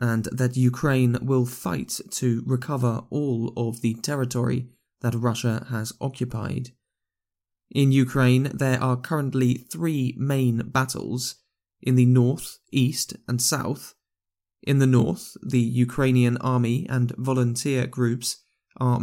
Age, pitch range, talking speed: 20-39, 115-130 Hz, 125 wpm